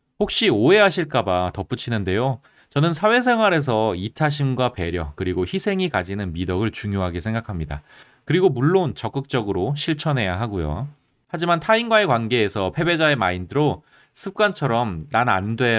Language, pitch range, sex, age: Korean, 95-145 Hz, male, 30-49